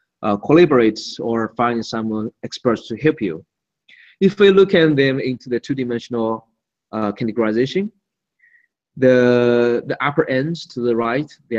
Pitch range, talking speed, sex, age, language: 115-155 Hz, 140 wpm, male, 20-39, English